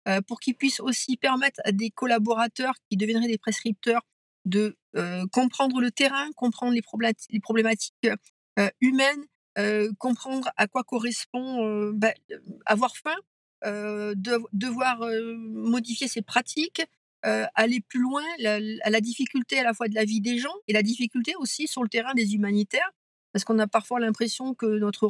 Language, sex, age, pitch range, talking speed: French, female, 50-69, 210-255 Hz, 170 wpm